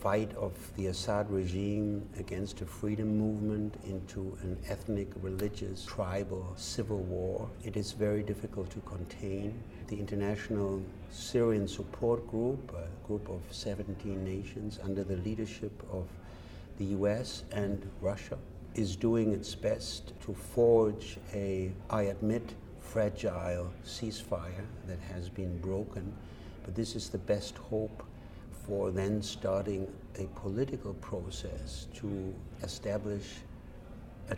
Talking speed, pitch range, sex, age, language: 120 wpm, 95-105 Hz, male, 60-79, English